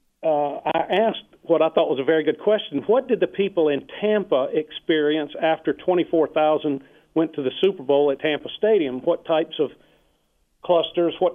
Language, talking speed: English, 175 wpm